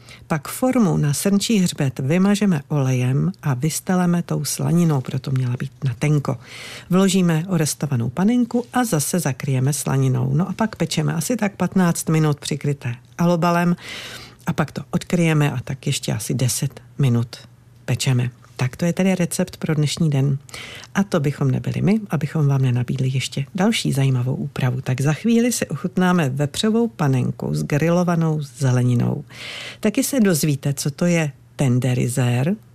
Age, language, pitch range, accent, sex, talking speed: 50-69, Czech, 130-175 Hz, native, female, 150 wpm